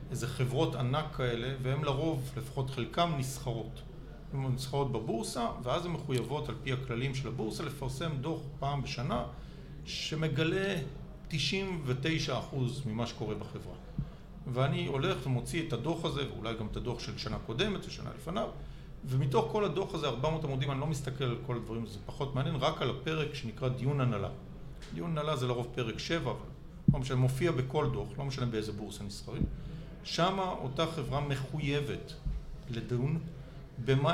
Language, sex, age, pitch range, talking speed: Hebrew, male, 50-69, 125-155 Hz, 150 wpm